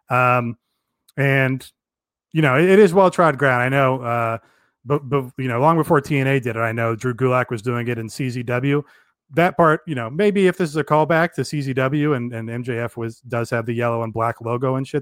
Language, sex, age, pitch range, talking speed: English, male, 30-49, 120-155 Hz, 220 wpm